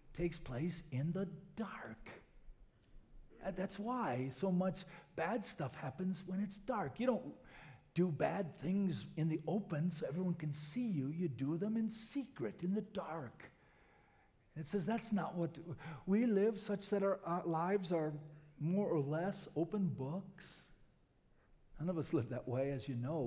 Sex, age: male, 50-69